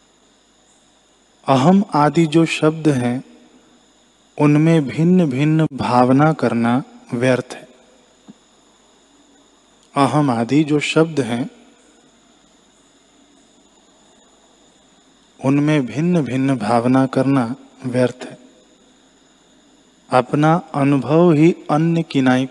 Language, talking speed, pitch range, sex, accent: Hindi, 75 wpm, 130-155 Hz, male, native